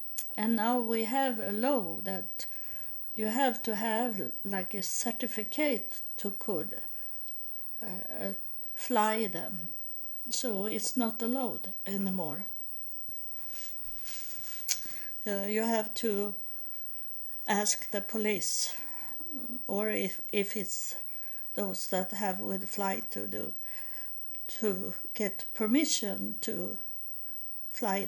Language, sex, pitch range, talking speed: English, female, 200-240 Hz, 100 wpm